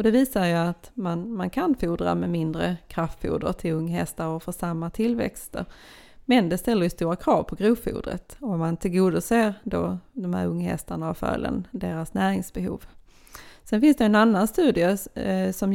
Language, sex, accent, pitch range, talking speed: Swedish, female, native, 175-225 Hz, 170 wpm